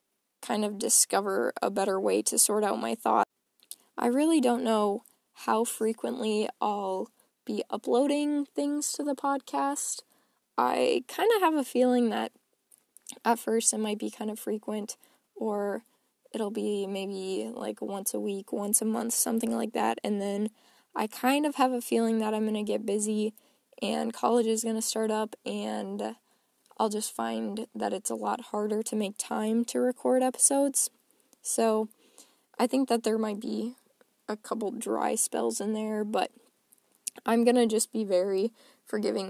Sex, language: female, English